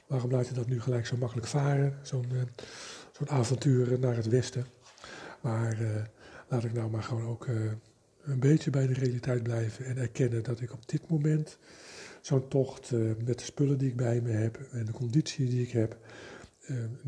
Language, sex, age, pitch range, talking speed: Dutch, male, 50-69, 115-135 Hz, 195 wpm